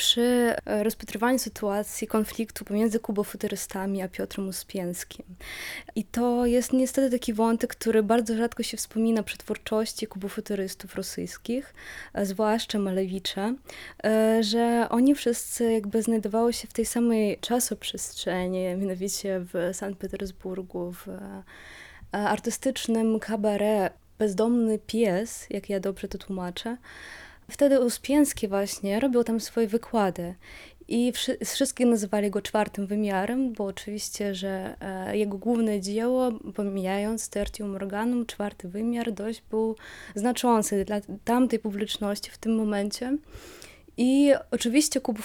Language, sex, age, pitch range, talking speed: Polish, female, 20-39, 205-235 Hz, 115 wpm